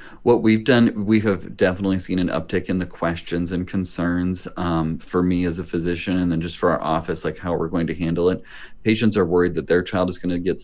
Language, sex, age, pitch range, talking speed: English, male, 30-49, 80-90 Hz, 245 wpm